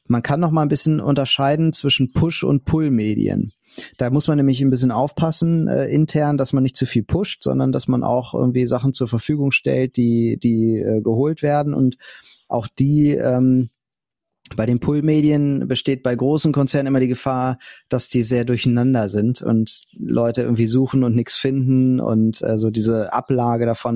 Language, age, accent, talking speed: German, 30-49, German, 185 wpm